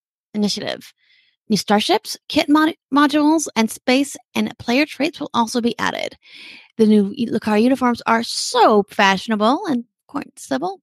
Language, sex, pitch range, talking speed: English, female, 205-260 Hz, 140 wpm